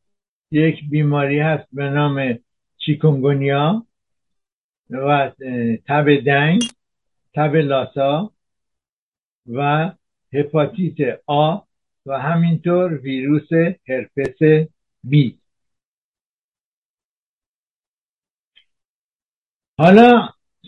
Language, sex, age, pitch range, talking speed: Persian, male, 60-79, 135-160 Hz, 60 wpm